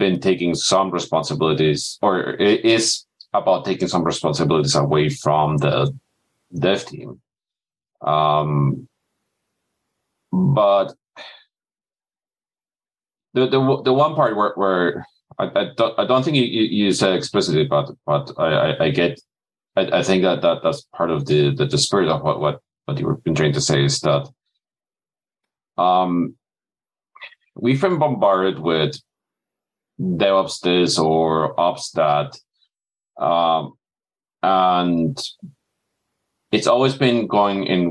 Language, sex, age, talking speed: English, male, 40-59, 125 wpm